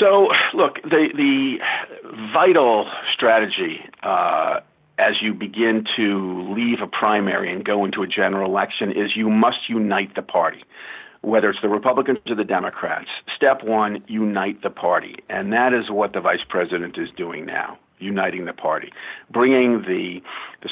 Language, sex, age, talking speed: English, male, 50-69, 155 wpm